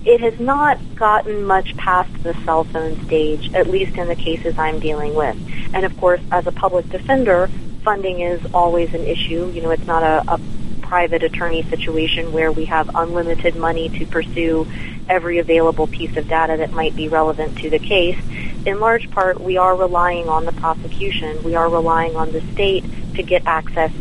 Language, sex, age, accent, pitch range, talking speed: English, female, 30-49, American, 160-180 Hz, 190 wpm